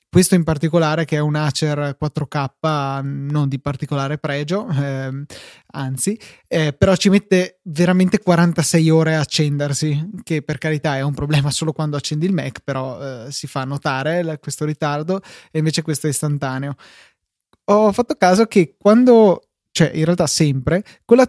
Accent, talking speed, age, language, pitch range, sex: native, 160 wpm, 20-39, Italian, 145-165 Hz, male